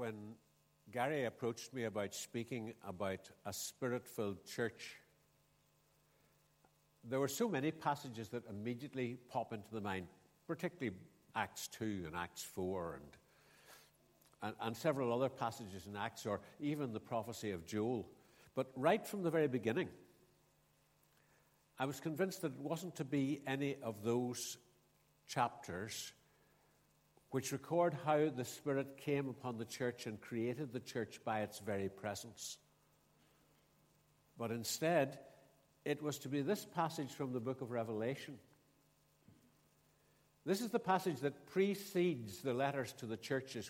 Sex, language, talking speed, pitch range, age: male, English, 135 wpm, 110-145 Hz, 60-79